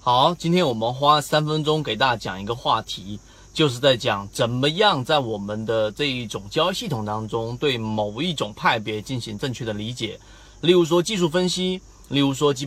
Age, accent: 30-49, native